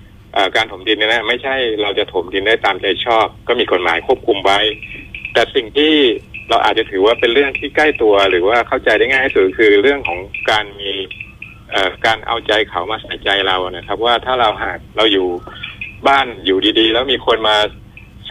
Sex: male